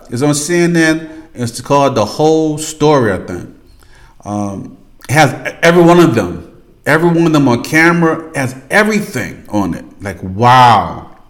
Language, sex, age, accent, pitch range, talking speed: English, male, 40-59, American, 105-145 Hz, 155 wpm